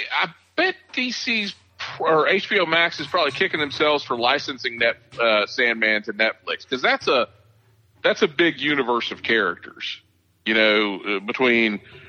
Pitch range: 110-150 Hz